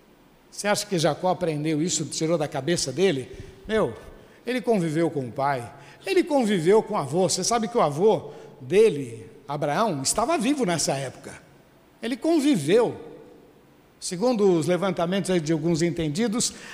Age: 60-79